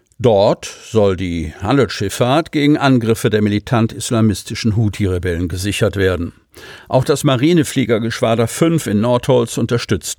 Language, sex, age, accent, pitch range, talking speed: German, male, 50-69, German, 105-130 Hz, 105 wpm